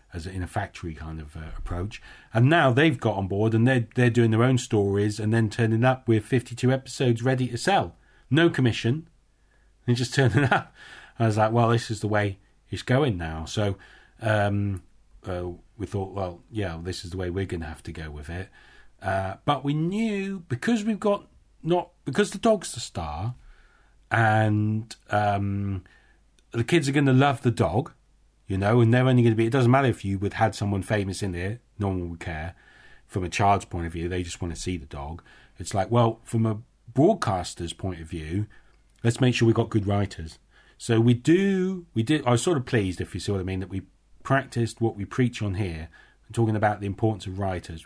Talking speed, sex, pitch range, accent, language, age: 215 wpm, male, 95-125 Hz, British, English, 40-59